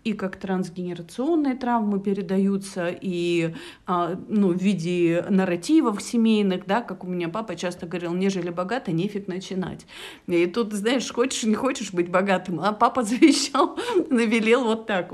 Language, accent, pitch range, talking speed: Russian, native, 180-225 Hz, 145 wpm